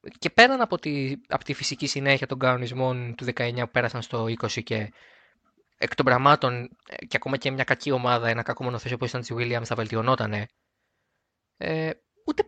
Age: 20-39